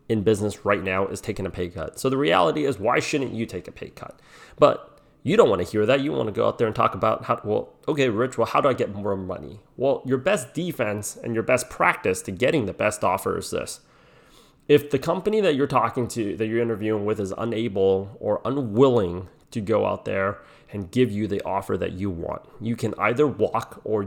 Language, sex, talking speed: English, male, 235 wpm